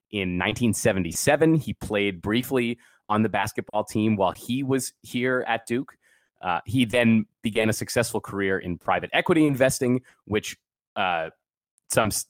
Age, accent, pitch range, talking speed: 30-49, American, 95-115 Hz, 140 wpm